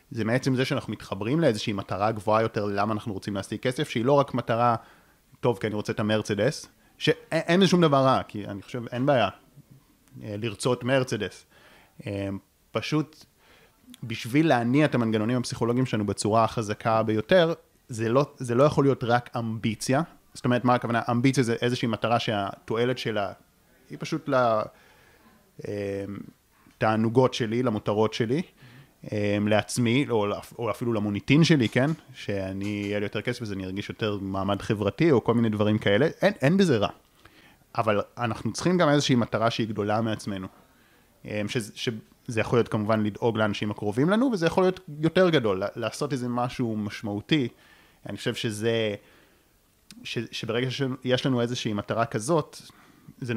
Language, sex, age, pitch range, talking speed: Hebrew, male, 30-49, 110-130 Hz, 150 wpm